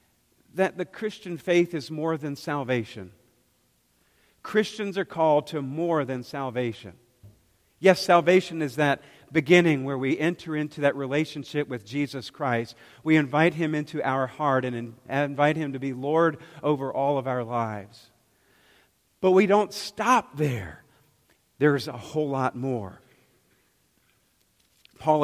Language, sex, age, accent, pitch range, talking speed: English, male, 50-69, American, 120-160 Hz, 135 wpm